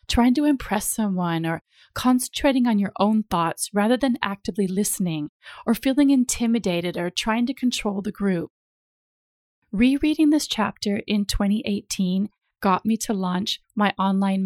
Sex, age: female, 30-49